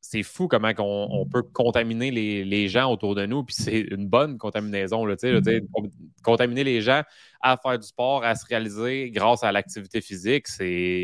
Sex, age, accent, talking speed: male, 20-39, Canadian, 200 wpm